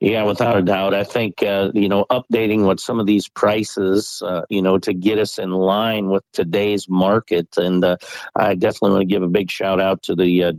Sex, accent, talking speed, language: male, American, 225 wpm, English